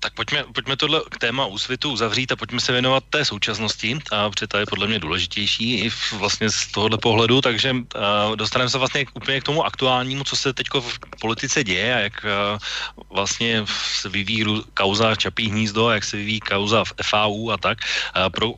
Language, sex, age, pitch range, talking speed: Slovak, male, 30-49, 100-110 Hz, 195 wpm